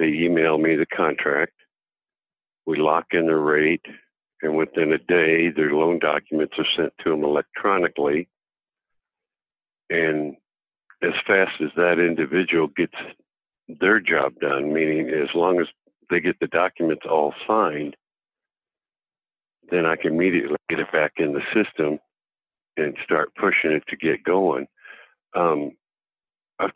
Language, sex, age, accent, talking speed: English, male, 60-79, American, 135 wpm